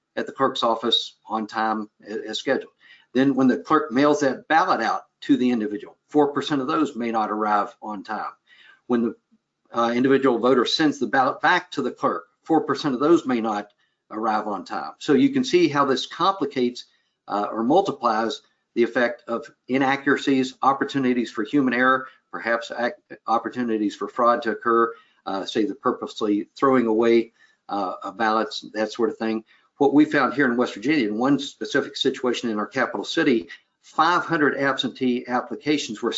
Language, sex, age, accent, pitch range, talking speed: English, male, 50-69, American, 115-140 Hz, 170 wpm